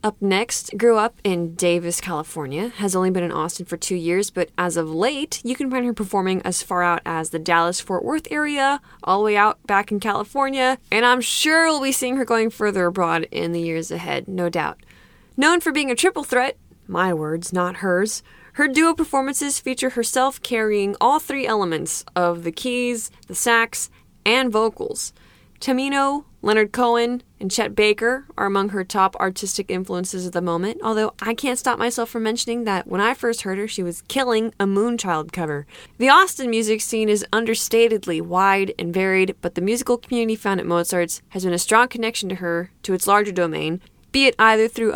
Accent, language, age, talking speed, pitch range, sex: American, English, 20-39, 195 wpm, 185-250 Hz, female